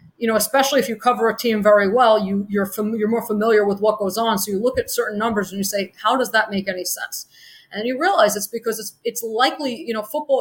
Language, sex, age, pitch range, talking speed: English, female, 30-49, 200-230 Hz, 265 wpm